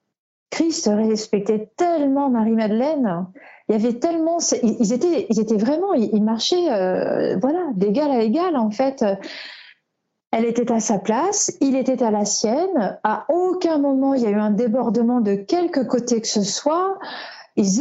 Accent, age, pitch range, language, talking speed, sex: French, 40-59, 220-295 Hz, French, 165 wpm, female